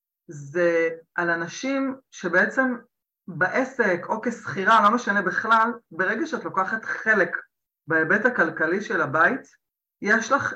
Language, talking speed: Hebrew, 115 wpm